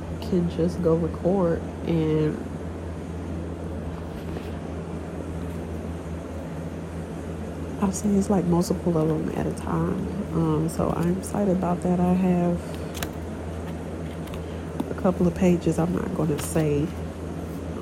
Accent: American